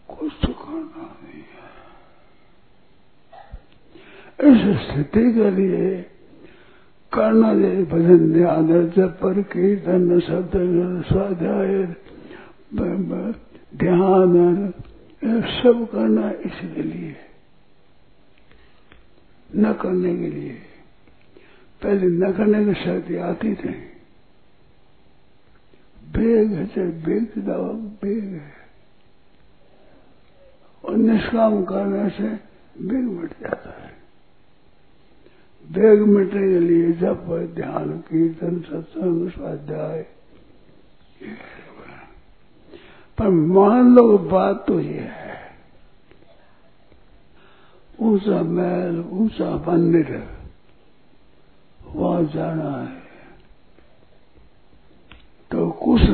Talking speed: 70 wpm